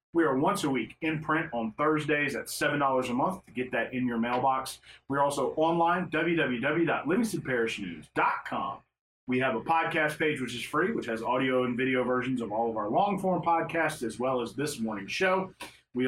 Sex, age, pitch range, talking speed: male, 30-49, 120-155 Hz, 190 wpm